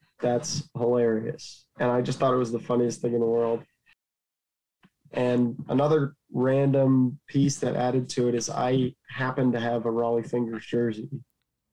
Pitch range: 120-130 Hz